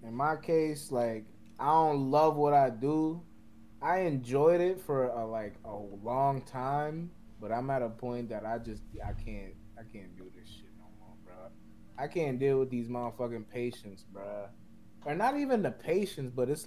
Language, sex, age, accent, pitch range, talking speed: English, male, 20-39, American, 110-140 Hz, 185 wpm